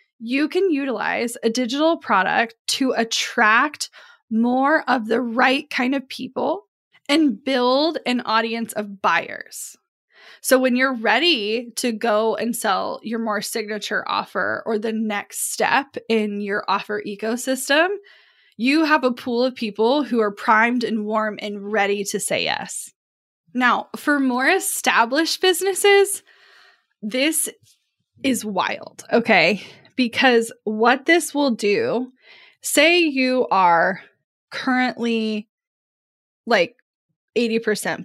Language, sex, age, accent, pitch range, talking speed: English, female, 10-29, American, 220-275 Hz, 120 wpm